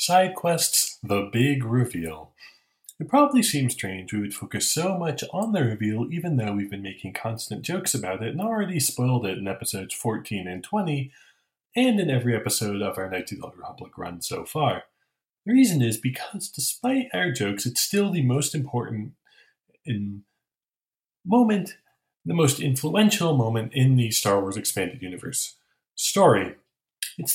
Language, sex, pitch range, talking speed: English, male, 105-155 Hz, 165 wpm